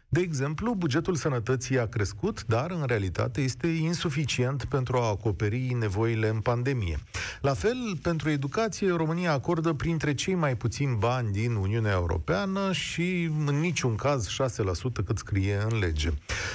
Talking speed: 145 wpm